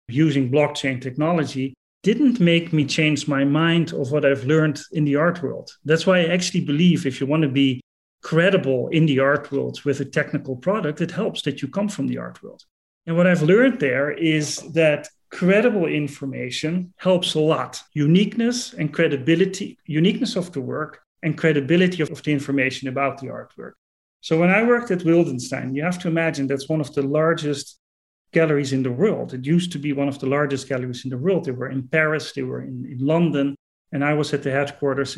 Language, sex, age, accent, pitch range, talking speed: English, male, 40-59, Dutch, 140-170 Hz, 200 wpm